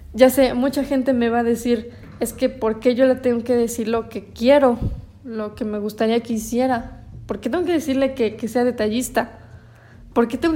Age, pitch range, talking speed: 20-39, 225-260 Hz, 215 wpm